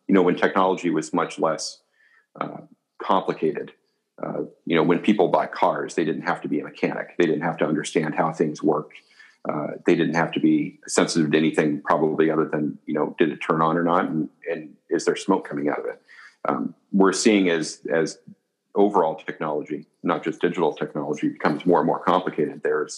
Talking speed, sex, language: 200 wpm, male, English